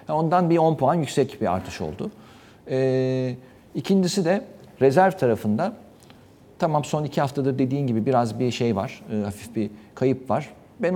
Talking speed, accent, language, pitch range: 165 wpm, native, Turkish, 110-165 Hz